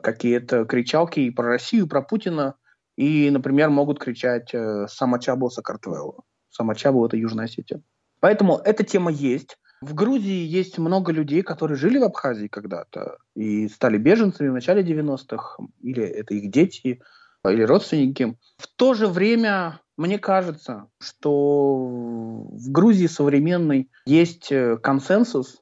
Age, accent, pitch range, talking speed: 20-39, native, 125-175 Hz, 135 wpm